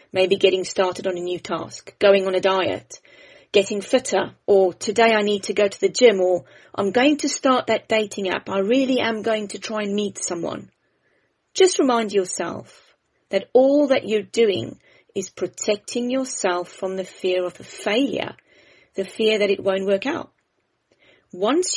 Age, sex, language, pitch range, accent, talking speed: 30-49, female, English, 195-260 Hz, British, 175 wpm